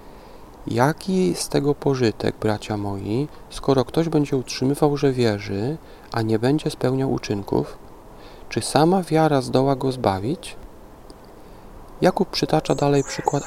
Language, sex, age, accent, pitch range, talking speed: Polish, male, 40-59, native, 115-145 Hz, 120 wpm